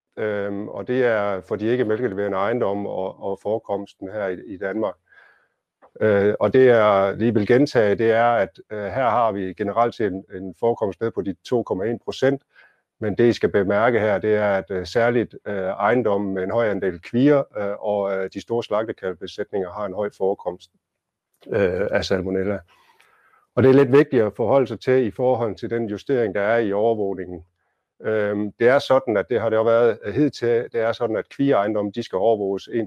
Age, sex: 50-69, male